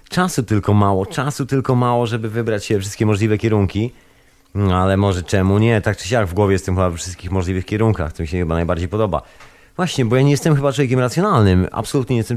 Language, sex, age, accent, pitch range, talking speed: Polish, male, 30-49, native, 95-125 Hz, 220 wpm